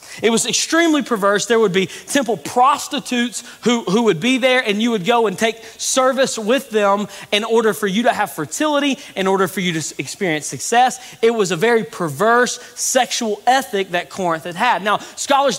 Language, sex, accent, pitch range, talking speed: English, male, American, 185-260 Hz, 195 wpm